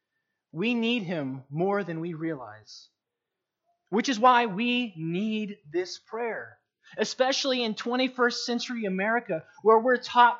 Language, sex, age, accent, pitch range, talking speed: English, male, 30-49, American, 165-230 Hz, 125 wpm